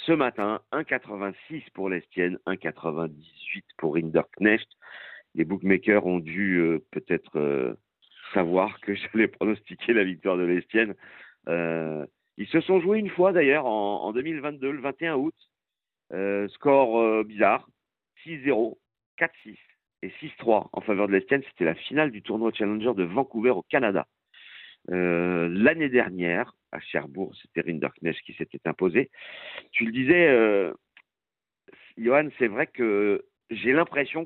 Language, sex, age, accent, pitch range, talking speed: French, male, 50-69, French, 90-130 Hz, 140 wpm